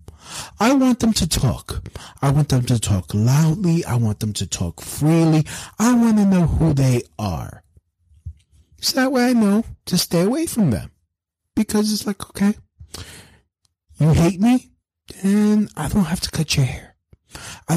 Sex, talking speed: male, 170 wpm